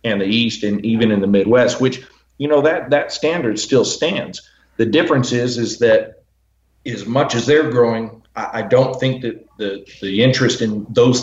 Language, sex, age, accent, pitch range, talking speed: English, male, 40-59, American, 100-120 Hz, 190 wpm